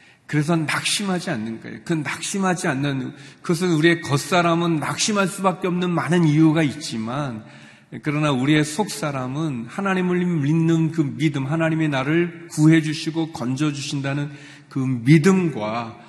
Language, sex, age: Korean, male, 40-59